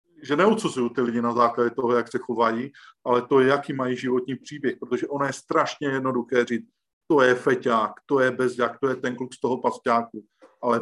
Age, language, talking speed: 50-69, Slovak, 205 wpm